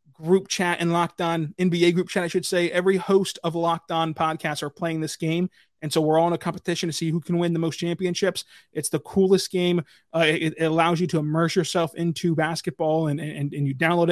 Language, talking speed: English, 235 wpm